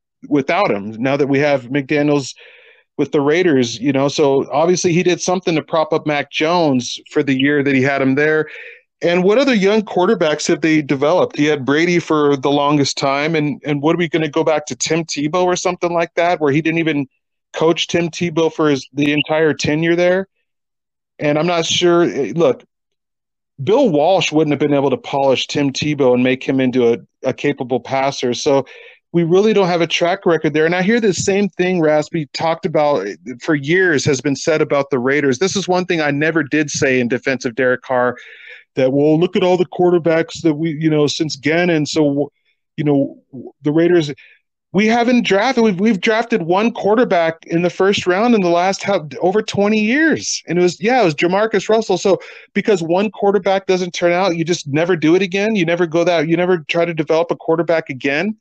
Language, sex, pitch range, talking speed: English, male, 145-180 Hz, 210 wpm